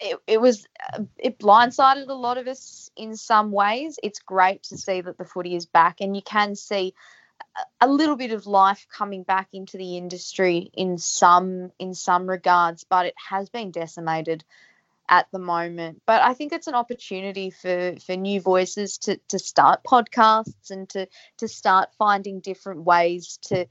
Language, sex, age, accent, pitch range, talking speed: English, female, 20-39, Australian, 180-205 Hz, 175 wpm